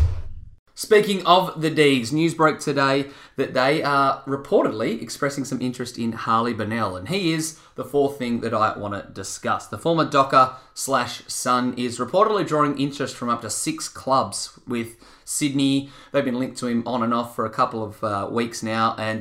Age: 20-39